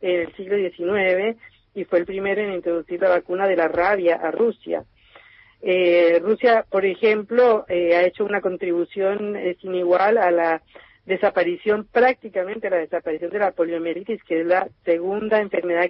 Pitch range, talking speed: 175-215 Hz, 165 wpm